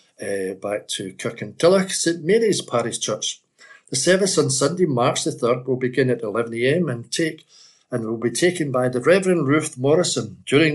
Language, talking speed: English, 185 wpm